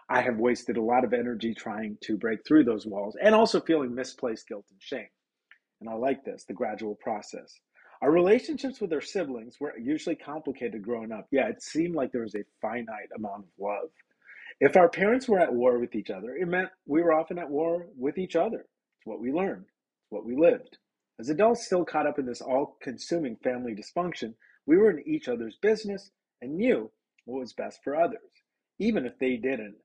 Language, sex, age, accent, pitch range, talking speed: English, male, 40-59, American, 115-165 Hz, 200 wpm